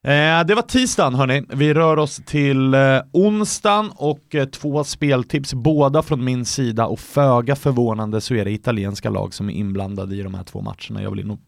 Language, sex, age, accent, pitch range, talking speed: English, male, 30-49, Swedish, 120-155 Hz, 185 wpm